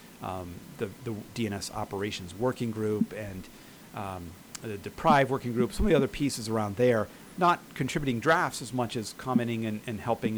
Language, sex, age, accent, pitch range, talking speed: English, male, 40-59, American, 100-120 Hz, 175 wpm